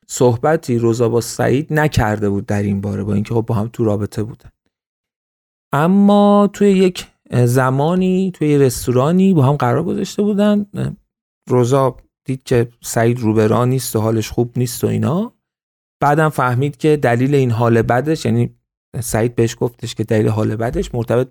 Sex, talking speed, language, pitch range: male, 160 wpm, Persian, 115-165 Hz